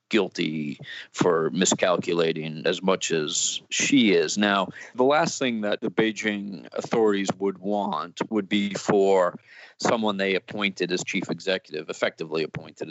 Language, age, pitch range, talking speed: English, 40-59, 90-105 Hz, 135 wpm